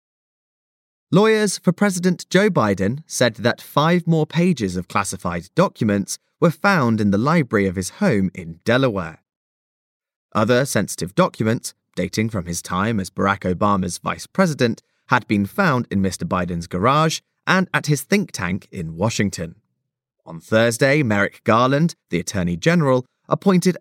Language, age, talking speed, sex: English, 20-39, 145 wpm, male